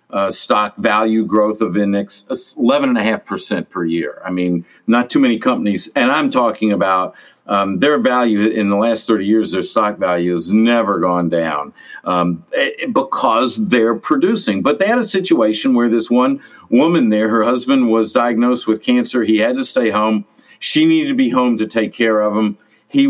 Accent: American